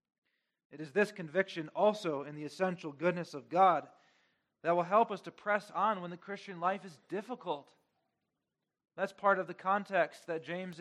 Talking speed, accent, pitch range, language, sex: 170 wpm, American, 170-215 Hz, English, male